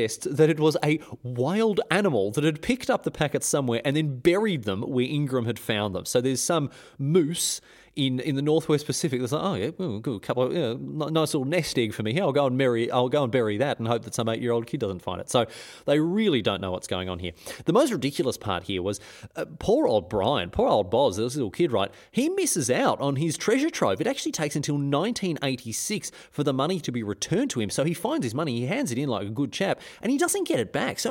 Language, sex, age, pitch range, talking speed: English, male, 30-49, 120-175 Hz, 255 wpm